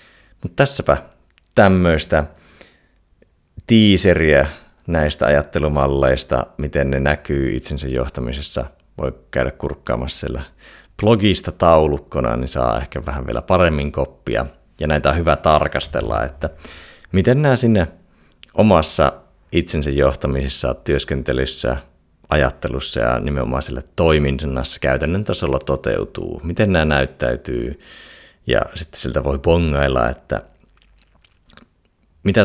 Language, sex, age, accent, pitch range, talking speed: Finnish, male, 30-49, native, 70-85 Hz, 100 wpm